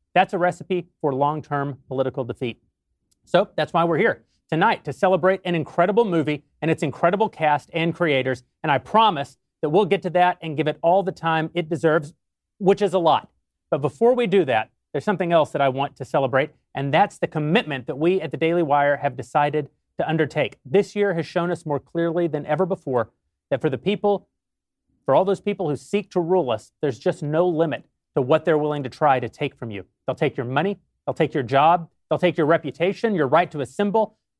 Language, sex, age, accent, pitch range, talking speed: English, male, 30-49, American, 145-190 Hz, 215 wpm